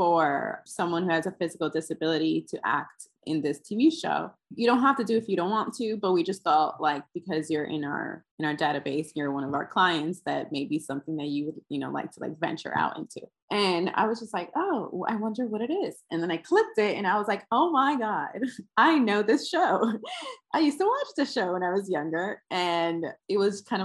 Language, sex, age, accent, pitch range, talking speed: English, female, 20-39, American, 165-245 Hz, 245 wpm